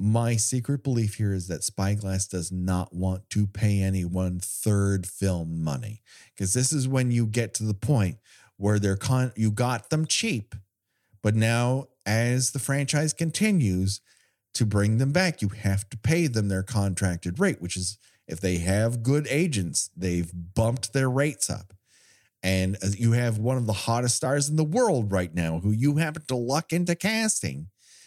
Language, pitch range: English, 95-140 Hz